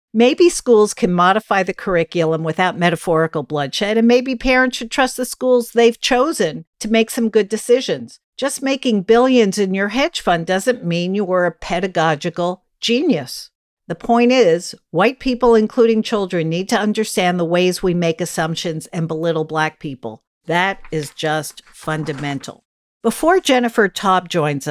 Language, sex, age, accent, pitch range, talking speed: English, female, 50-69, American, 160-225 Hz, 155 wpm